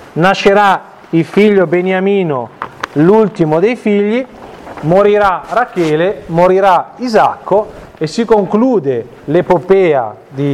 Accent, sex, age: native, male, 40-59